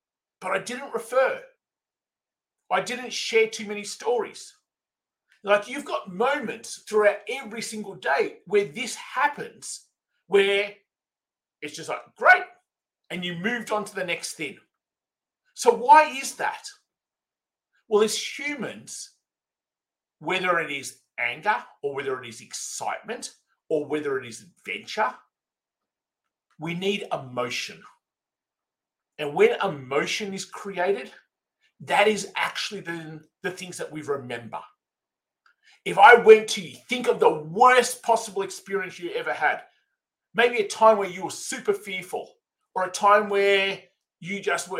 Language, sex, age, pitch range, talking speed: English, male, 50-69, 185-250 Hz, 135 wpm